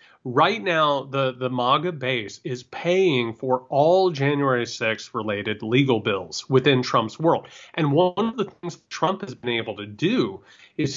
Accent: American